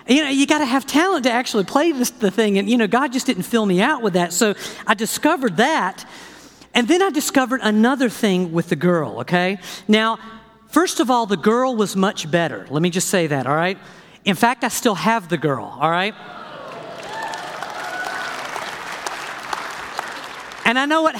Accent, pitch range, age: American, 180-245 Hz, 50-69